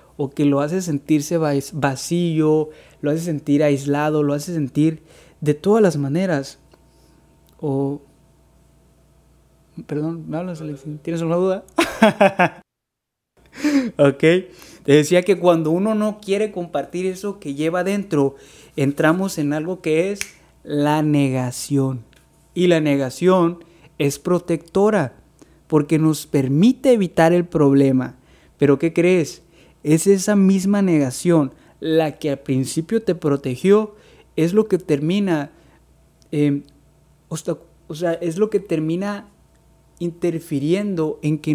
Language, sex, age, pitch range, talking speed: Spanish, male, 30-49, 145-185 Hz, 120 wpm